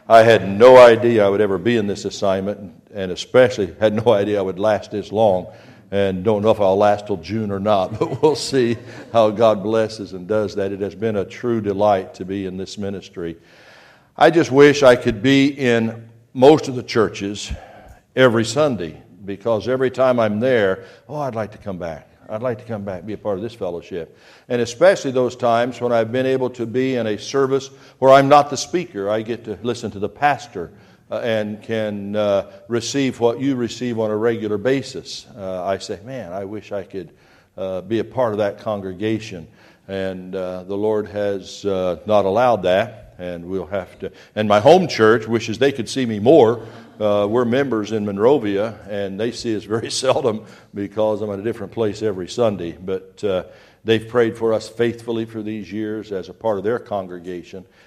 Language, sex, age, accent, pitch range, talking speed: English, male, 60-79, American, 100-120 Hz, 200 wpm